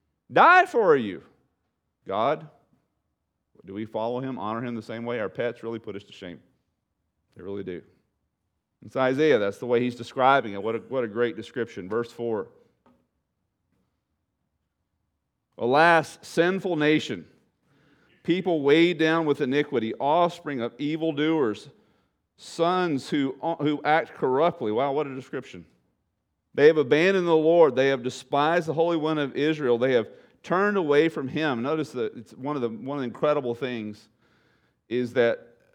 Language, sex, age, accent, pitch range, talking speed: English, male, 40-59, American, 105-145 Hz, 150 wpm